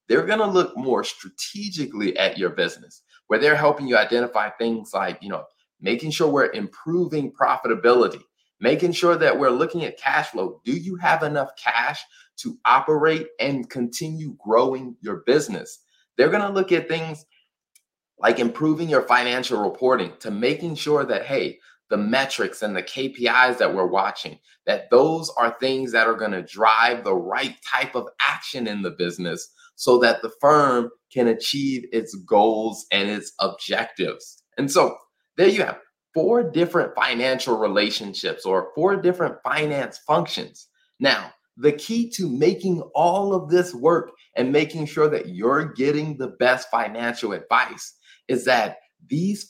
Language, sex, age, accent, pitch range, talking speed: English, male, 30-49, American, 125-175 Hz, 160 wpm